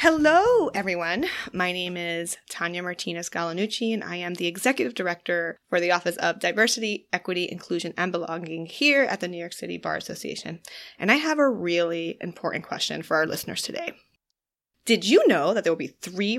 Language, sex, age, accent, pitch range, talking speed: English, female, 20-39, American, 170-225 Hz, 185 wpm